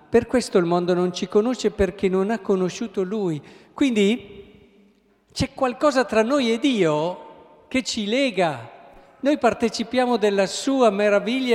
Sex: male